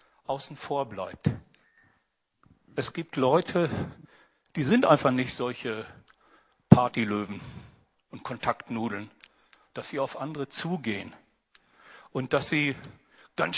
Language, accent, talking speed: German, German, 100 wpm